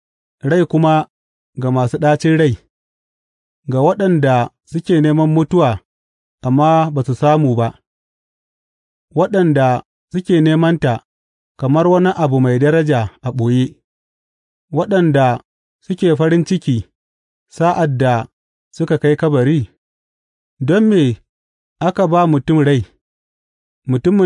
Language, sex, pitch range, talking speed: English, male, 115-165 Hz, 90 wpm